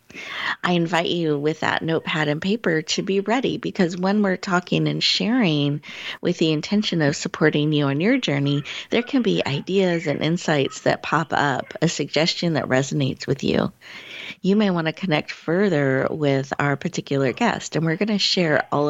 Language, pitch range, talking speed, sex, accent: English, 140-180 Hz, 180 wpm, female, American